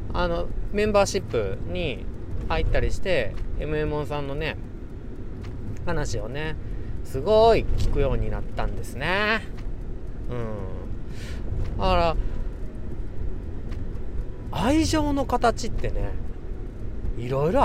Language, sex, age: Japanese, male, 40-59